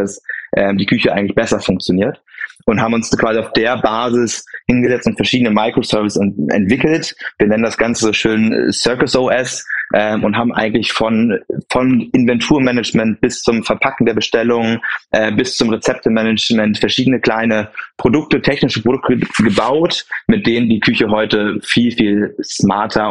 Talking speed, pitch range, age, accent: 150 wpm, 105-115 Hz, 20-39, German